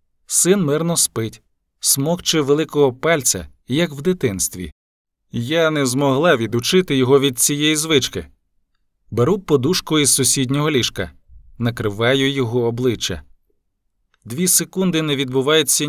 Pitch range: 115-155 Hz